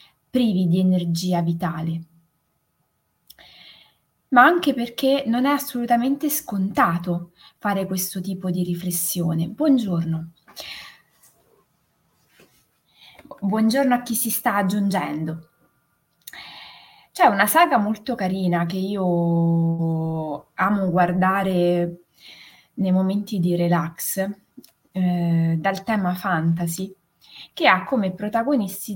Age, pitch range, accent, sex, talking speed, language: 20-39, 170-215 Hz, native, female, 90 wpm, Italian